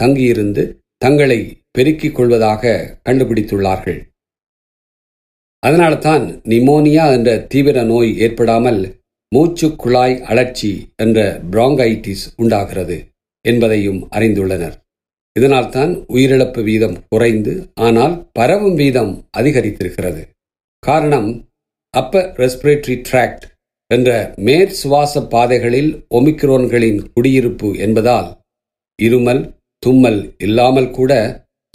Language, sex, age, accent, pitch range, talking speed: Tamil, male, 50-69, native, 105-135 Hz, 80 wpm